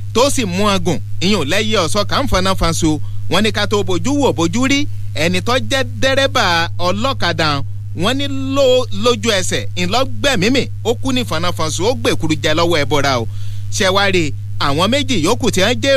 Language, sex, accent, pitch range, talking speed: English, male, Nigerian, 100-130 Hz, 155 wpm